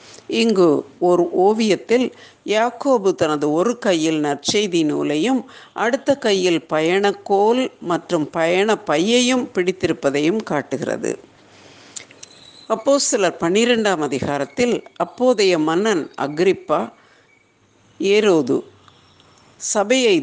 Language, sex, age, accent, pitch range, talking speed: Tamil, female, 60-79, native, 160-225 Hz, 70 wpm